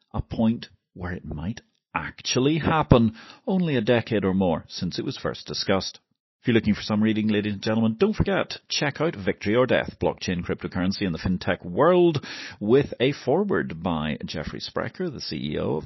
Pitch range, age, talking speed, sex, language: 90-115 Hz, 40-59, 180 wpm, male, English